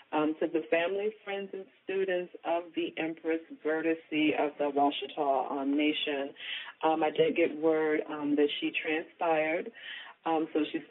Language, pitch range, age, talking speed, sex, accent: English, 150-180 Hz, 40-59, 155 wpm, female, American